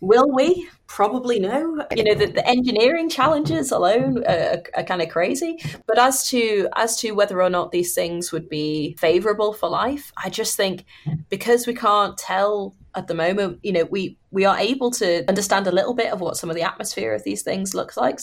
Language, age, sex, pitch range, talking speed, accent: English, 20-39, female, 165-215 Hz, 205 wpm, British